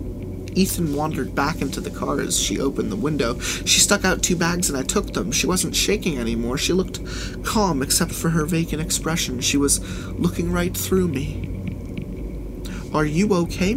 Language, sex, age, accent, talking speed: English, male, 30-49, American, 180 wpm